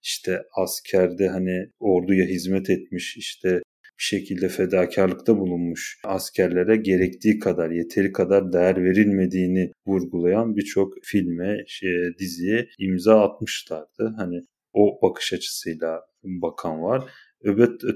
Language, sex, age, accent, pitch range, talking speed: Turkish, male, 30-49, native, 95-110 Hz, 105 wpm